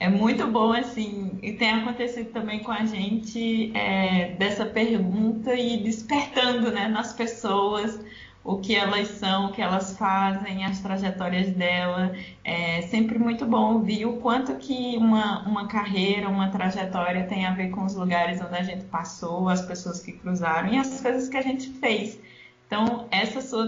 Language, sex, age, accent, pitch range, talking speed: Portuguese, female, 20-39, Brazilian, 190-225 Hz, 170 wpm